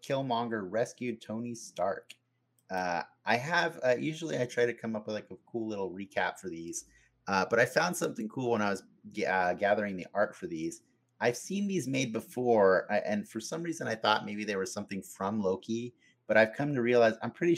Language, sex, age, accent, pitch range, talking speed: English, male, 30-49, American, 105-125 Hz, 210 wpm